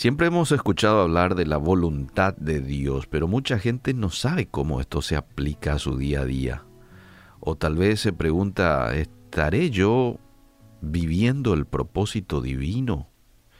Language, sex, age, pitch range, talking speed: Spanish, male, 50-69, 80-120 Hz, 150 wpm